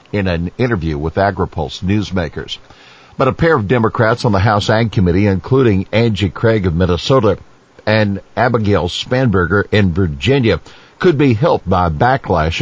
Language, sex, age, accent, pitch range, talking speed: English, male, 60-79, American, 90-120 Hz, 145 wpm